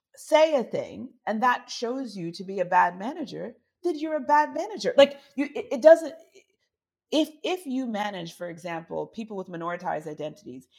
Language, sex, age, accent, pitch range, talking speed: English, female, 40-59, American, 190-275 Hz, 180 wpm